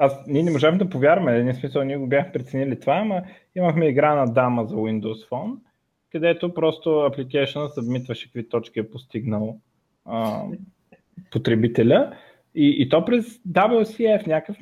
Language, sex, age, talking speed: Bulgarian, male, 20-39, 150 wpm